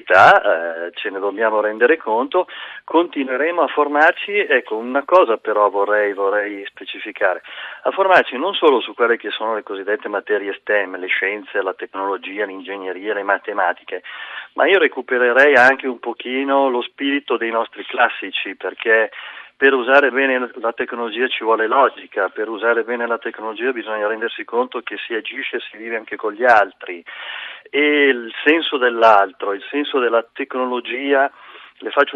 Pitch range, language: 105-135 Hz, Italian